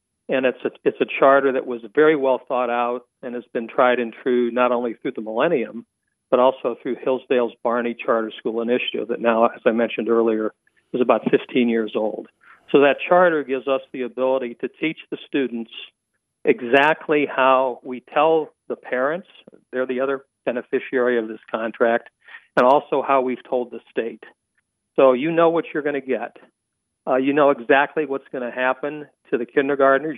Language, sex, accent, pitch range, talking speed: English, male, American, 120-140 Hz, 180 wpm